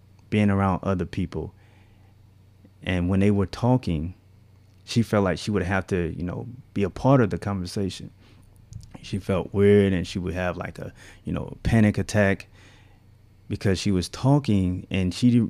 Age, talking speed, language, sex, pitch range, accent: 20-39, 165 wpm, English, male, 100-115 Hz, American